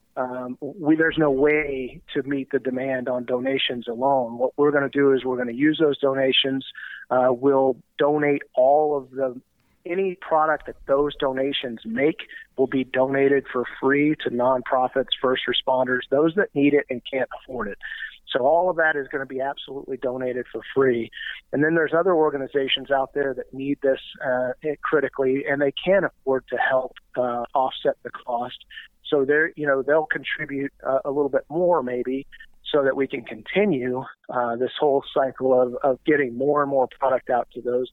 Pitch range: 130-150 Hz